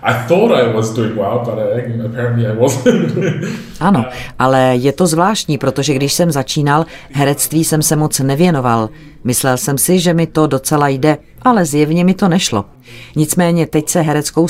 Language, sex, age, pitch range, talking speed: Czech, female, 40-59, 125-160 Hz, 130 wpm